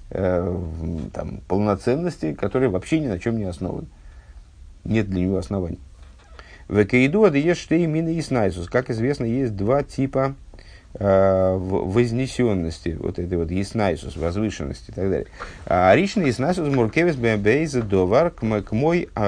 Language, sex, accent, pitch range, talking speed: Russian, male, native, 90-130 Hz, 100 wpm